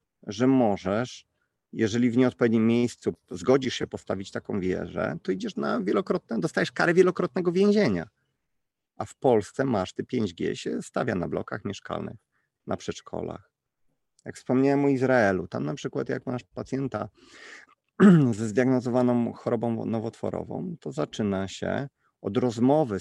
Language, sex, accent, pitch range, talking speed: Polish, male, native, 95-130 Hz, 135 wpm